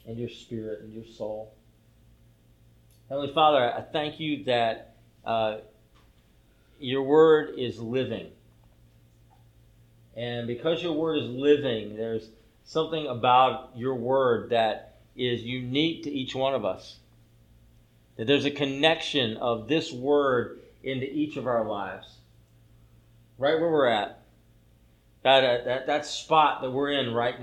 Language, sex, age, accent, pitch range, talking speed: English, male, 40-59, American, 115-155 Hz, 135 wpm